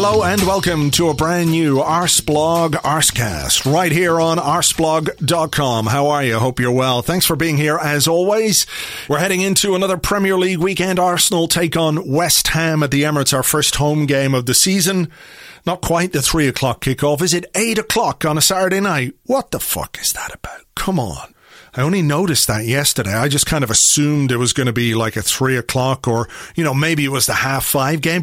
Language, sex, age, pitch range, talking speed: English, male, 40-59, 135-175 Hz, 205 wpm